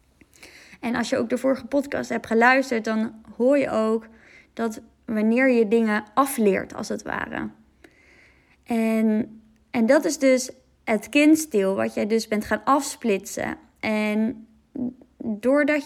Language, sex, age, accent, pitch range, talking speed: Dutch, female, 20-39, Dutch, 215-265 Hz, 135 wpm